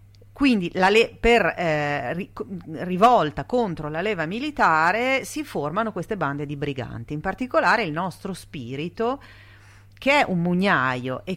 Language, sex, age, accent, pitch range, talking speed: Italian, female, 40-59, native, 140-205 Hz, 125 wpm